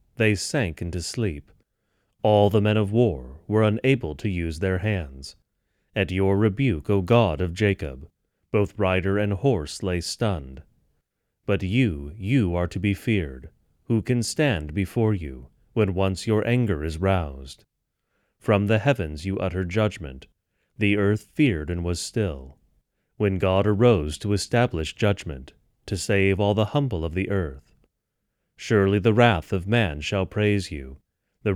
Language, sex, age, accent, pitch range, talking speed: English, male, 30-49, American, 90-110 Hz, 155 wpm